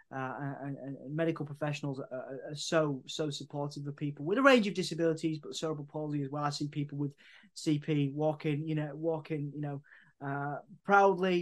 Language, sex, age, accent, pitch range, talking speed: English, male, 20-39, British, 145-160 Hz, 185 wpm